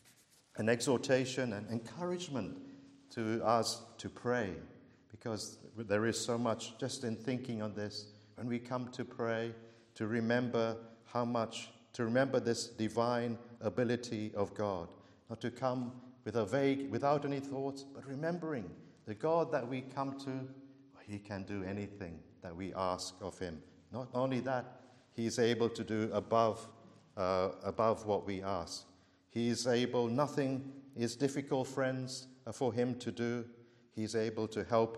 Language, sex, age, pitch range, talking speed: English, male, 50-69, 110-130 Hz, 150 wpm